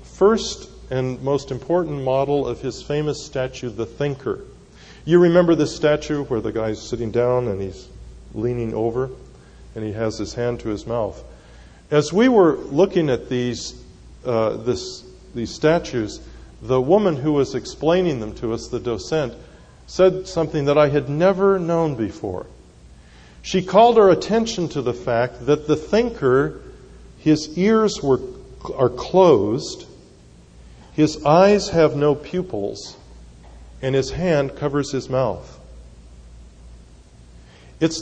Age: 40-59